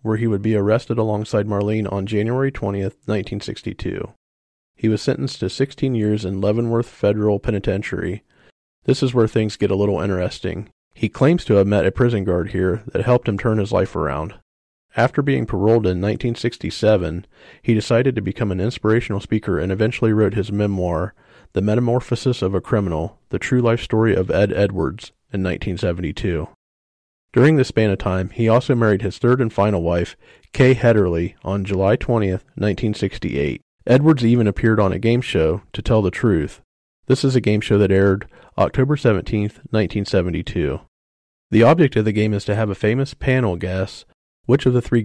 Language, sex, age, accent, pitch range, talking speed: English, male, 40-59, American, 95-115 Hz, 175 wpm